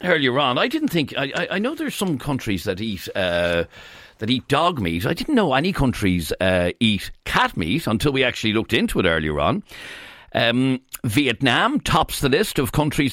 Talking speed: 190 wpm